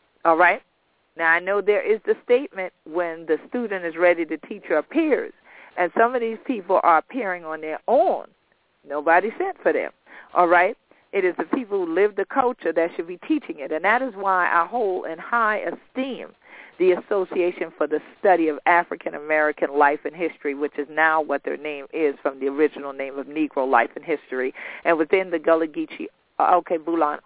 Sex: female